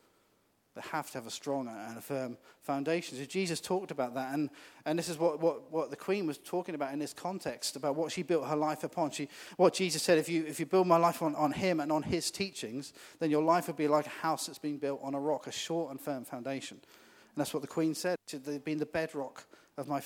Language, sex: English, male